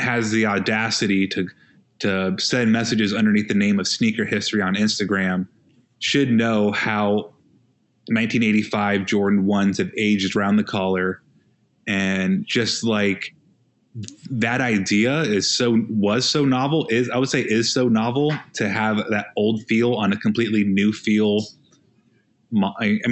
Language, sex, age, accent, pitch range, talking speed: English, male, 20-39, American, 105-125 Hz, 140 wpm